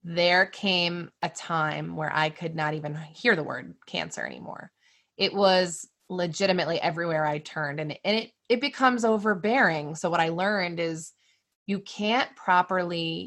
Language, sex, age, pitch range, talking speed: English, female, 20-39, 165-210 Hz, 155 wpm